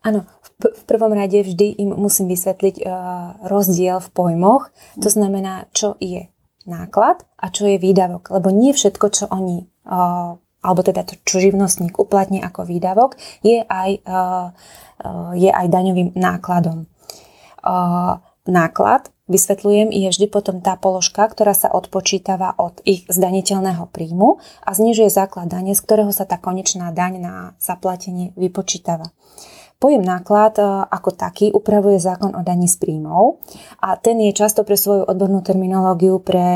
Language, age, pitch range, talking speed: Slovak, 20-39, 180-205 Hz, 145 wpm